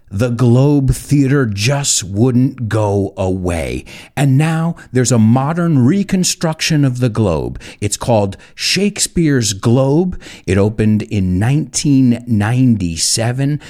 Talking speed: 105 wpm